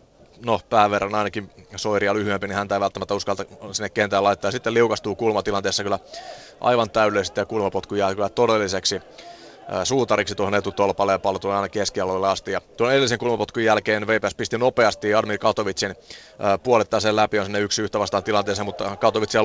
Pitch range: 100-115 Hz